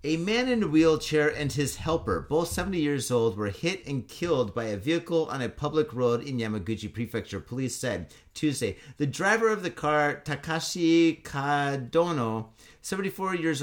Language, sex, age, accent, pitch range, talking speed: English, male, 30-49, American, 135-175 Hz, 165 wpm